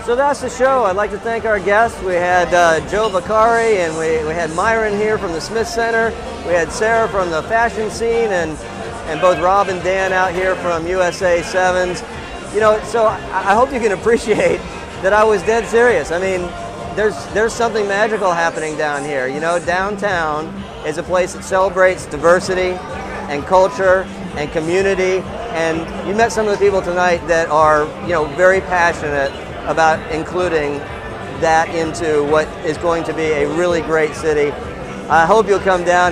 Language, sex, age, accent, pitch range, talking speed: English, male, 40-59, American, 160-210 Hz, 185 wpm